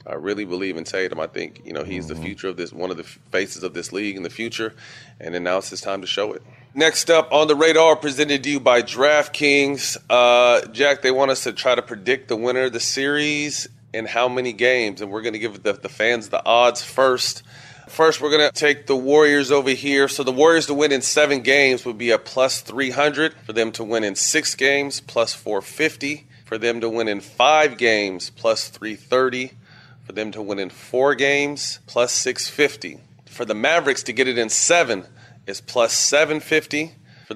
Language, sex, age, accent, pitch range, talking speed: English, male, 30-49, American, 115-145 Hz, 215 wpm